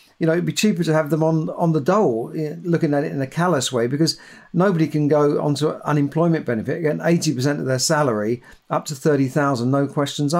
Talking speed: 220 wpm